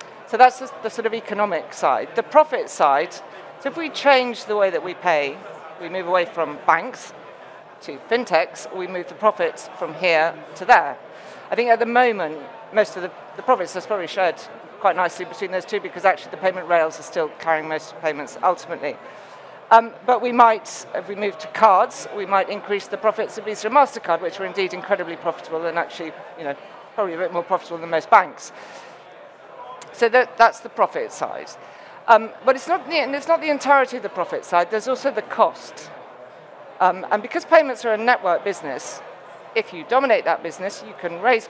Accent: British